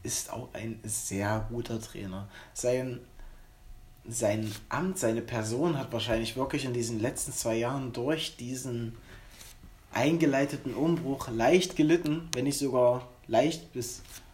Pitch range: 110-145 Hz